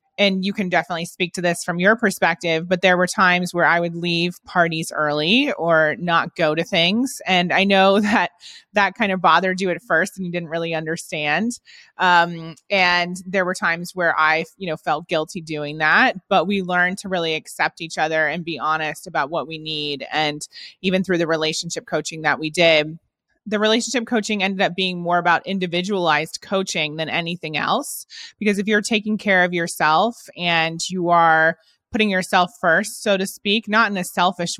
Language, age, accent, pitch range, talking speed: English, 20-39, American, 155-190 Hz, 195 wpm